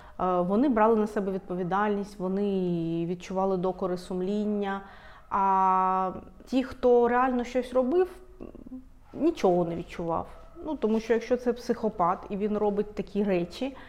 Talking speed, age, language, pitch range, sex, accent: 125 wpm, 30-49, Ukrainian, 185-225 Hz, female, native